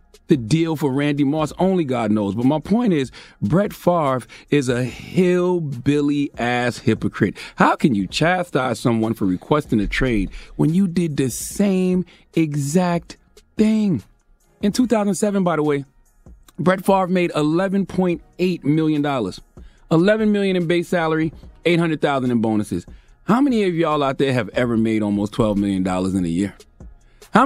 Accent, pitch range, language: American, 120-190 Hz, English